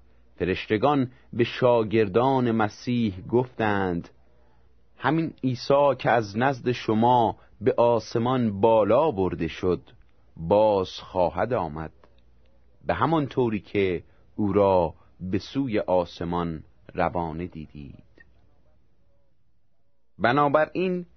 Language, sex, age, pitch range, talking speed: Persian, male, 30-49, 80-120 Hz, 90 wpm